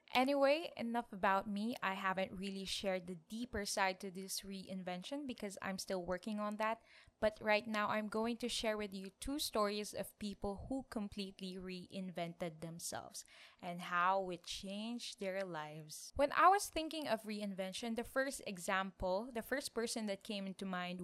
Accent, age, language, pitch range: Filipino, 20-39, English, 190-230 Hz